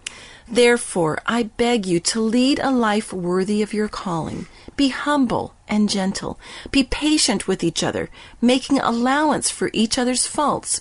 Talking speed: 150 wpm